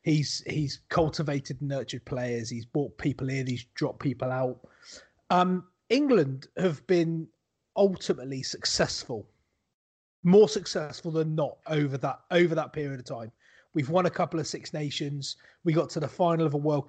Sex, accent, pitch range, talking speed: male, British, 145-195 Hz, 165 wpm